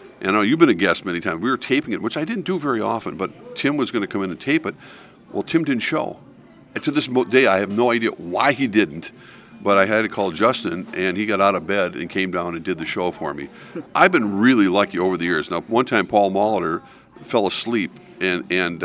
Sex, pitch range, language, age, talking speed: male, 95-130 Hz, English, 50-69, 260 wpm